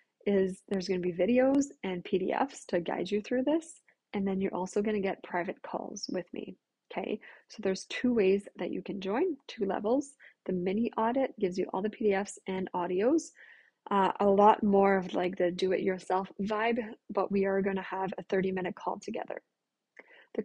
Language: English